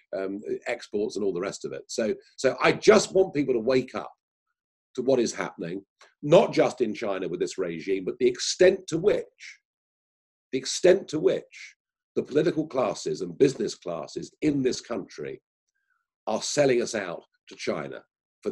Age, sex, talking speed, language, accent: 50-69, male, 170 wpm, English, British